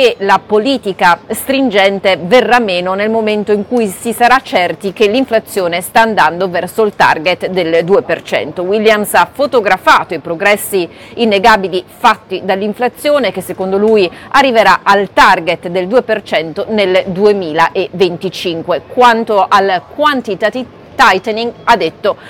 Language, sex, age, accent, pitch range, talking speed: Italian, female, 40-59, native, 190-230 Hz, 120 wpm